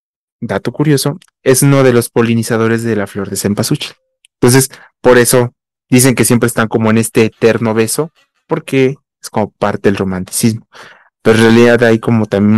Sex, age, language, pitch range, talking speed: male, 20-39, Spanish, 110-140 Hz, 170 wpm